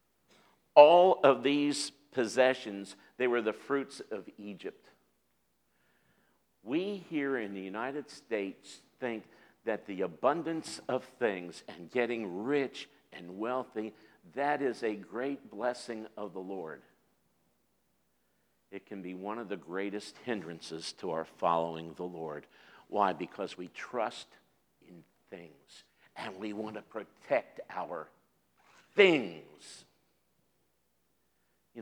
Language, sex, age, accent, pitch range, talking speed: English, male, 50-69, American, 85-135 Hz, 115 wpm